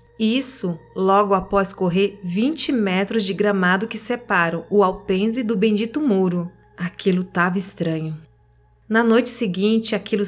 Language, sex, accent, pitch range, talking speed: Portuguese, female, Brazilian, 180-220 Hz, 130 wpm